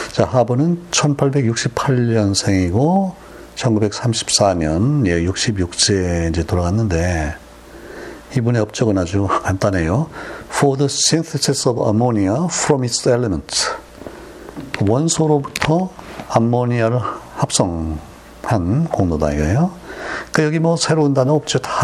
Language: Korean